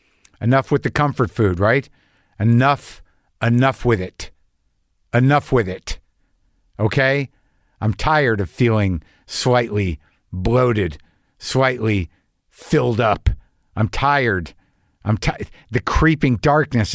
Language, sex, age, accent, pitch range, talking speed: English, male, 50-69, American, 105-140 Hz, 105 wpm